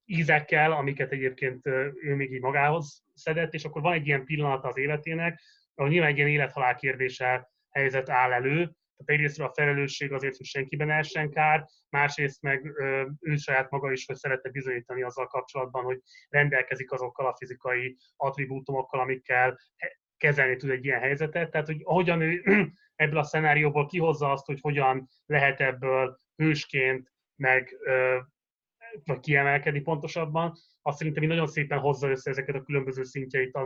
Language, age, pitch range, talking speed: Hungarian, 30-49, 130-150 Hz, 150 wpm